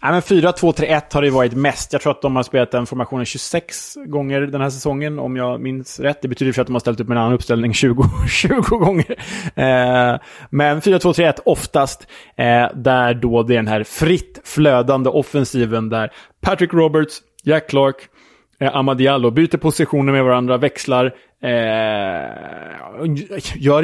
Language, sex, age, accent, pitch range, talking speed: Swedish, male, 20-39, Norwegian, 115-145 Hz, 160 wpm